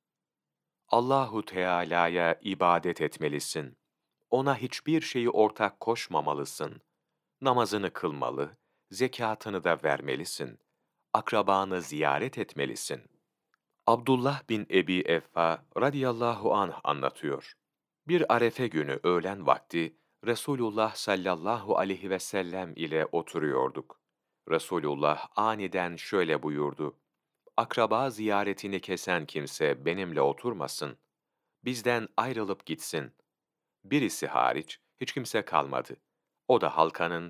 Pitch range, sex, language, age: 85-120 Hz, male, Turkish, 40-59